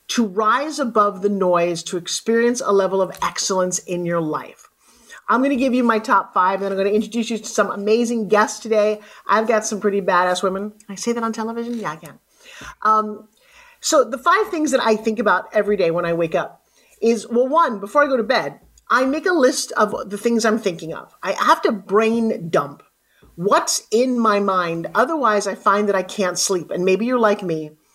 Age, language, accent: 40-59, English, American